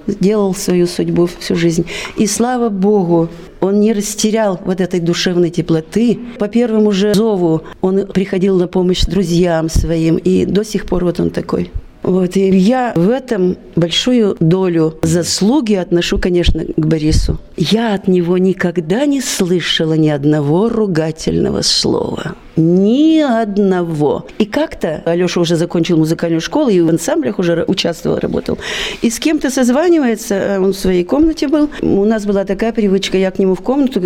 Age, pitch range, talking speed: 40-59, 175-235 Hz, 155 wpm